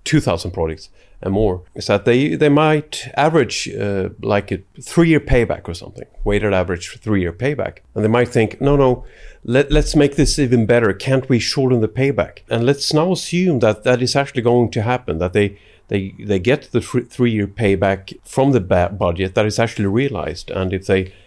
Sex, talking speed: male, 200 wpm